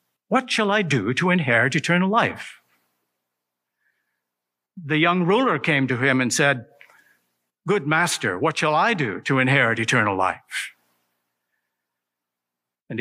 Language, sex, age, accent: English, male, 60-79, American